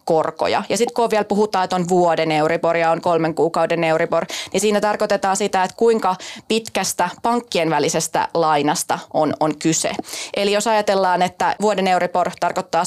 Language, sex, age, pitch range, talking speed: Finnish, female, 20-39, 180-220 Hz, 160 wpm